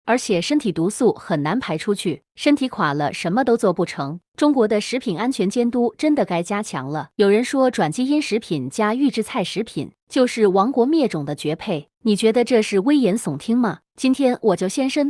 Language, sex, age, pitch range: Chinese, female, 30-49, 180-255 Hz